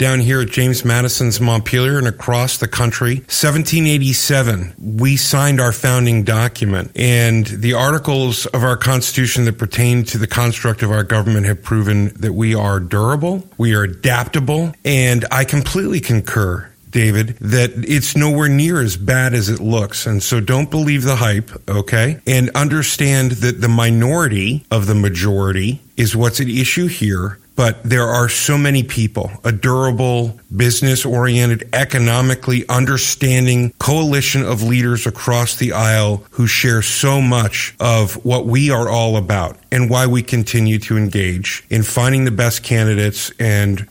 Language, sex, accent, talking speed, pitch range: English, male, American, 155 wpm, 110-135 Hz